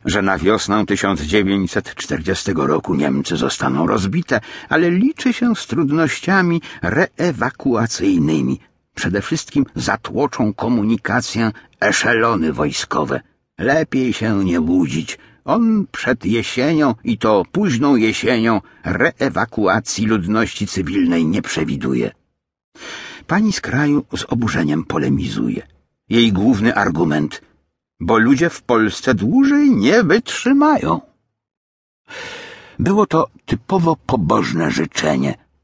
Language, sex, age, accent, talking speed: Polish, male, 60-79, native, 100 wpm